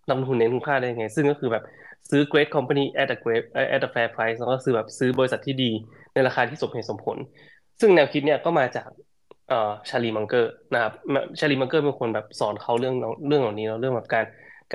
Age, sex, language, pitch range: 20-39, male, Thai, 115-140 Hz